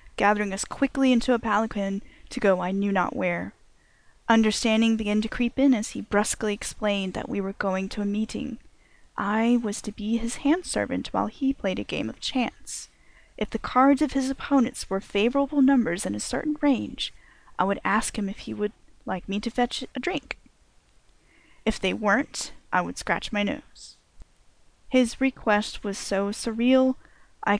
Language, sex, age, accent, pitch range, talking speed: English, female, 10-29, American, 205-250 Hz, 175 wpm